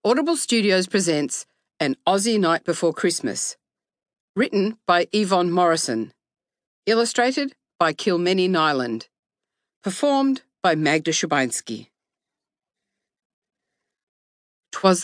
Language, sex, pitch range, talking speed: English, female, 180-260 Hz, 85 wpm